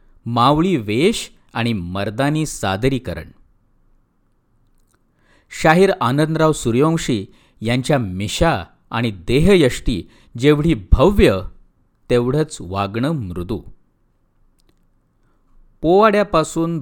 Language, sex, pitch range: Marathi, male, 110-155 Hz